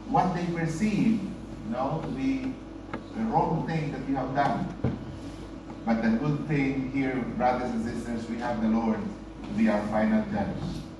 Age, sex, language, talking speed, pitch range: 50-69, male, English, 170 wpm, 145-175 Hz